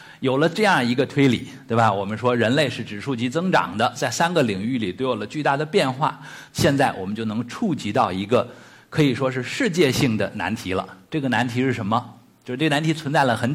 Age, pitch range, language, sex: 50-69, 115-155 Hz, Chinese, male